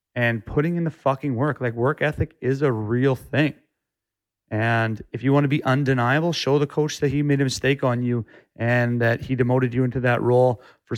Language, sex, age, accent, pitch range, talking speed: English, male, 30-49, American, 120-145 Hz, 215 wpm